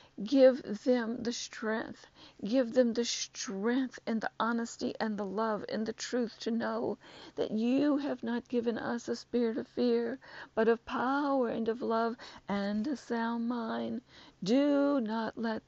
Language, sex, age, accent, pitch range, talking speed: English, female, 50-69, American, 225-255 Hz, 160 wpm